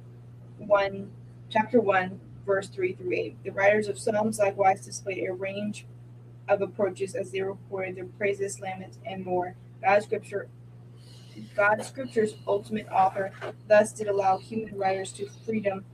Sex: female